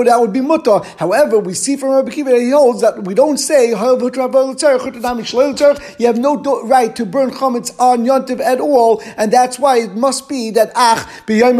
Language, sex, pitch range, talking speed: English, male, 220-255 Hz, 200 wpm